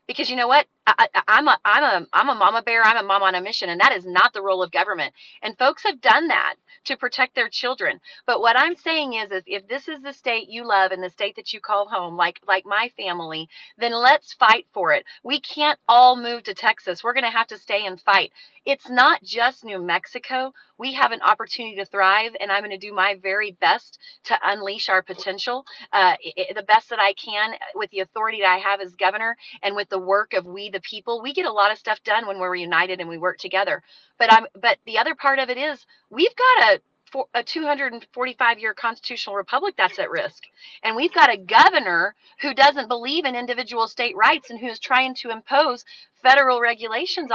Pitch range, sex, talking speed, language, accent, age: 195-260 Hz, female, 225 wpm, English, American, 30-49